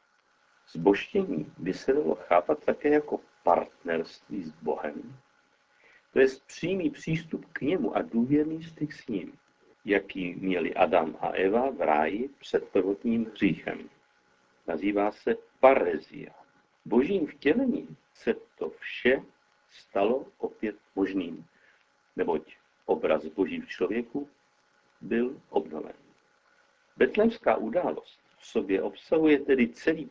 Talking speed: 110 wpm